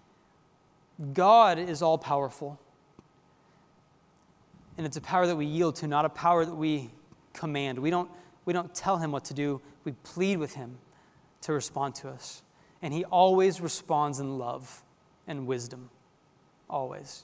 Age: 20-39